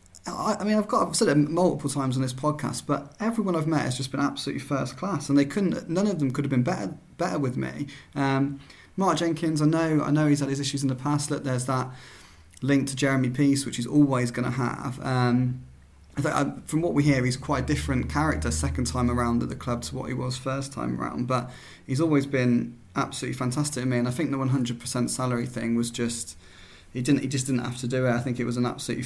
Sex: male